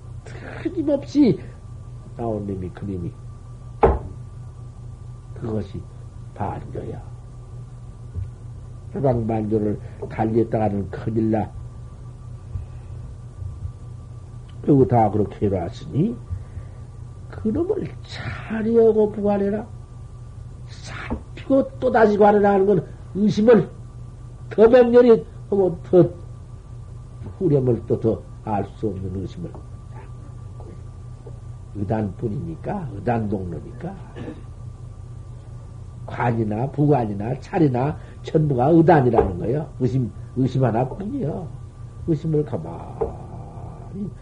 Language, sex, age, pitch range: Korean, male, 60-79, 115-130 Hz